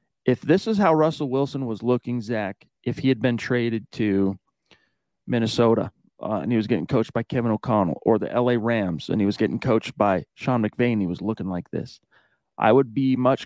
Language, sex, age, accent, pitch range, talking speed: English, male, 40-59, American, 110-140 Hz, 205 wpm